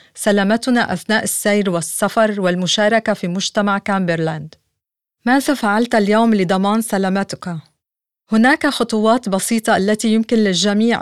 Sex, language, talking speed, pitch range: female, Arabic, 105 wpm, 195-230 Hz